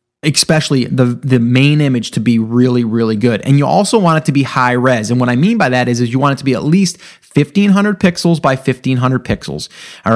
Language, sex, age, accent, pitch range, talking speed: English, male, 30-49, American, 125-160 Hz, 235 wpm